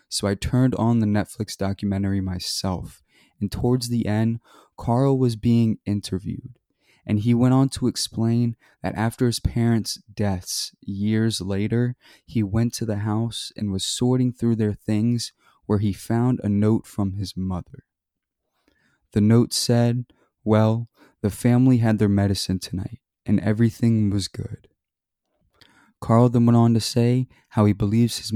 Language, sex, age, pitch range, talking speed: English, male, 20-39, 100-120 Hz, 150 wpm